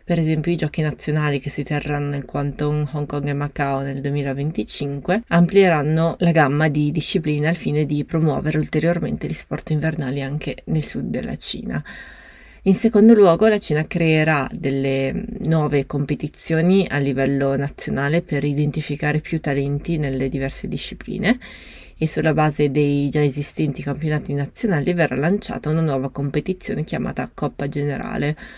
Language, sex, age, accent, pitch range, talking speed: Italian, female, 20-39, native, 145-165 Hz, 145 wpm